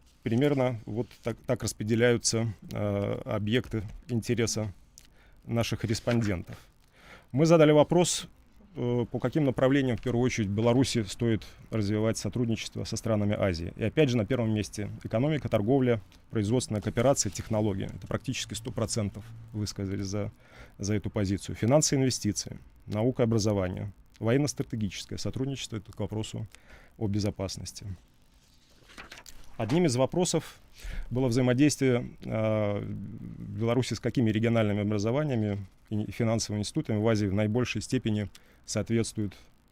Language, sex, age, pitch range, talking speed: Russian, male, 30-49, 105-120 Hz, 120 wpm